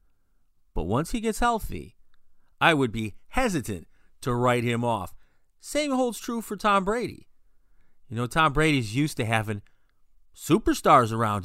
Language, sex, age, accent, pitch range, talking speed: English, male, 40-59, American, 95-150 Hz, 145 wpm